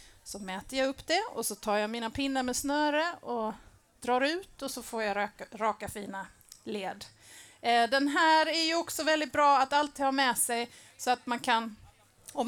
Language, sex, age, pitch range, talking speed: Swedish, female, 30-49, 210-275 Hz, 195 wpm